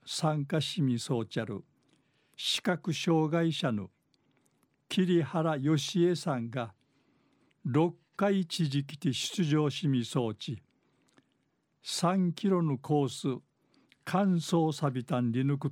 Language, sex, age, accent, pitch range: Japanese, male, 60-79, native, 130-170 Hz